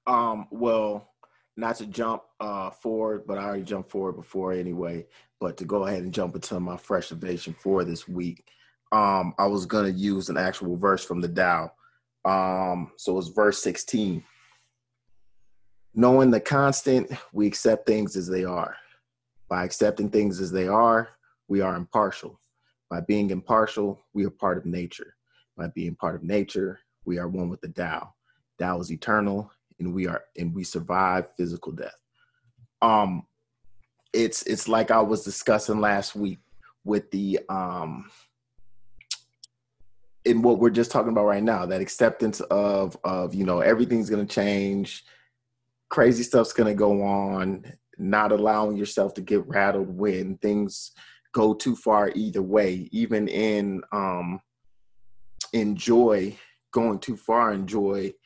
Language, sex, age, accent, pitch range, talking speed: English, male, 30-49, American, 95-110 Hz, 155 wpm